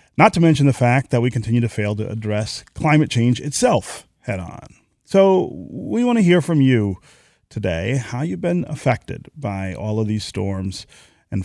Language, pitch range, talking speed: English, 105-135 Hz, 185 wpm